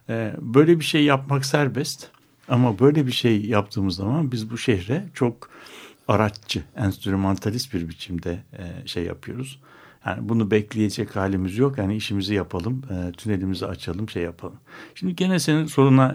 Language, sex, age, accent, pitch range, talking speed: Turkish, male, 60-79, native, 100-145 Hz, 140 wpm